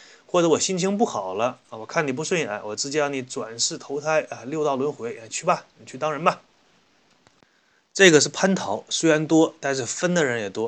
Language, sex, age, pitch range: Chinese, male, 20-39, 125-190 Hz